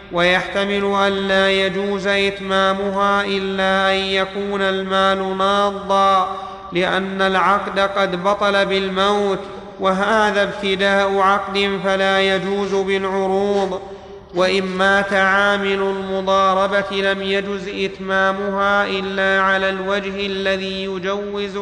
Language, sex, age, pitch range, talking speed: Arabic, male, 30-49, 195-200 Hz, 90 wpm